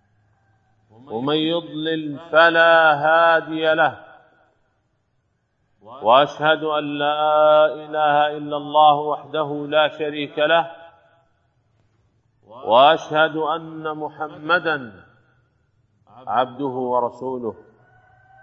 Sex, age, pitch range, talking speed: male, 40-59, 115-155 Hz, 65 wpm